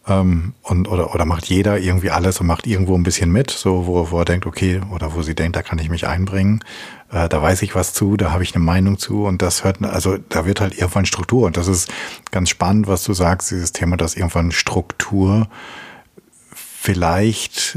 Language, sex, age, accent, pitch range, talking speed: German, male, 50-69, German, 85-100 Hz, 215 wpm